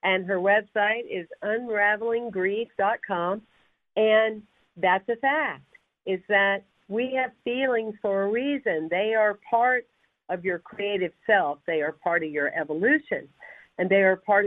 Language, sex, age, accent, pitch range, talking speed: English, female, 50-69, American, 185-240 Hz, 140 wpm